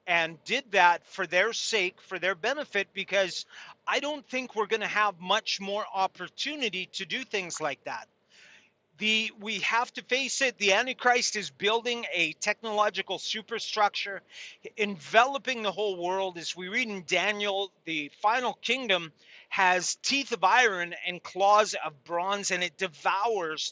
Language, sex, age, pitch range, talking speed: English, male, 40-59, 190-230 Hz, 150 wpm